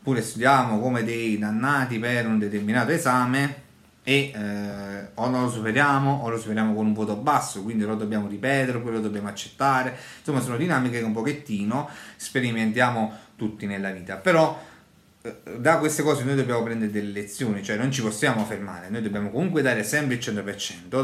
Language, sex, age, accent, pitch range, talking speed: Italian, male, 30-49, native, 100-125 Hz, 170 wpm